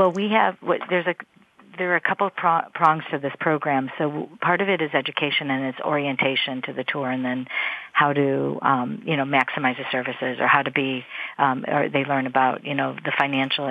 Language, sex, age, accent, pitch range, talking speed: English, female, 50-69, American, 130-145 Hz, 225 wpm